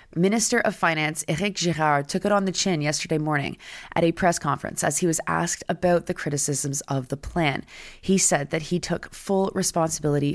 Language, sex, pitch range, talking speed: English, female, 155-190 Hz, 190 wpm